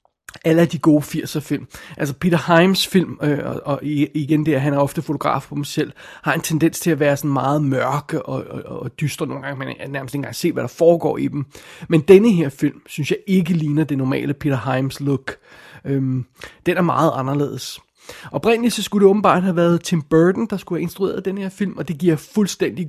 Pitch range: 145-175 Hz